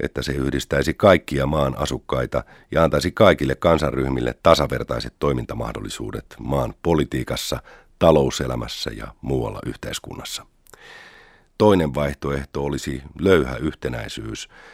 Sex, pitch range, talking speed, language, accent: male, 70-85 Hz, 95 wpm, Finnish, native